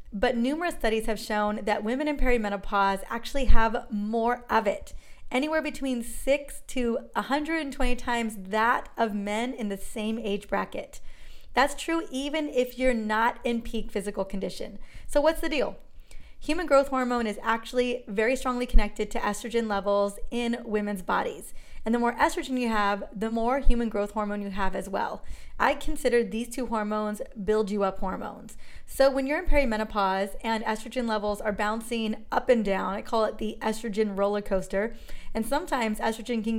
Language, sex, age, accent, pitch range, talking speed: English, female, 30-49, American, 210-255 Hz, 170 wpm